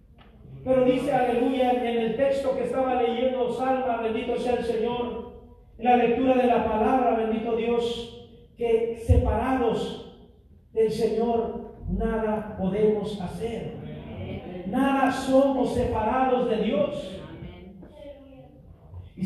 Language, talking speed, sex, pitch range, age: Spanish, 110 wpm, male, 230-275 Hz, 40-59